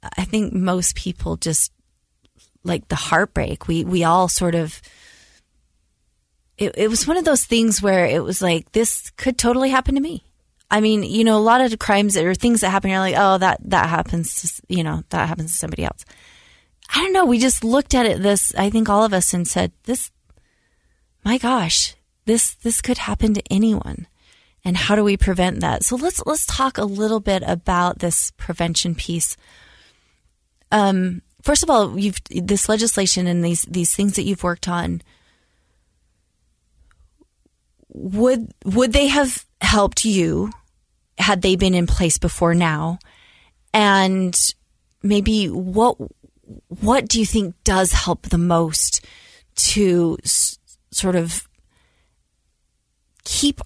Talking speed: 160 wpm